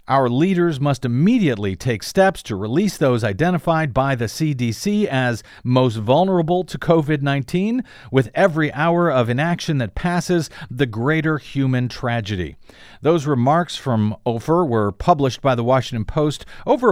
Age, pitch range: 50-69, 125-175 Hz